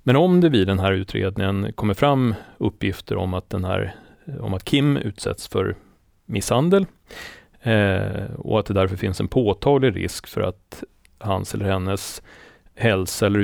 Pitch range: 95-115 Hz